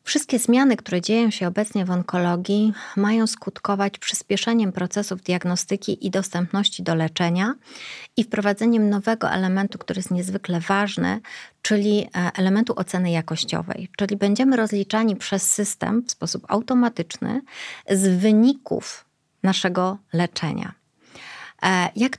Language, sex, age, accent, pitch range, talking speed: Polish, female, 30-49, native, 180-215 Hz, 115 wpm